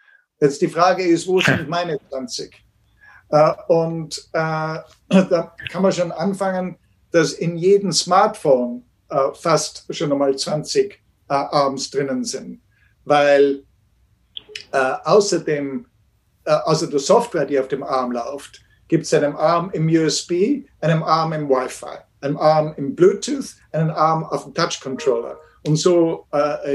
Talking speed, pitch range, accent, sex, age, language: 140 wpm, 140-180 Hz, German, male, 60-79, German